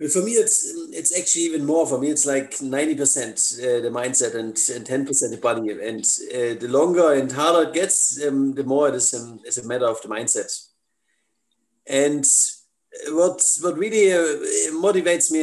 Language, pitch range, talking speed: English, 140-210 Hz, 185 wpm